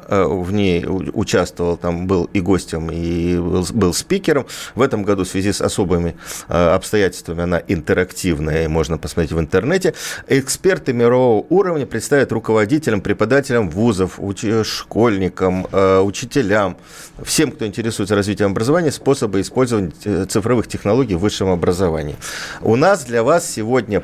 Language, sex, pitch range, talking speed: Russian, male, 90-120 Hz, 125 wpm